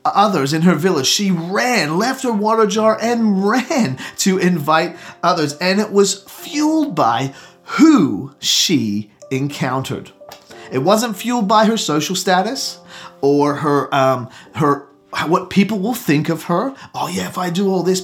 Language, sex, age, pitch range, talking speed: English, male, 30-49, 140-200 Hz, 155 wpm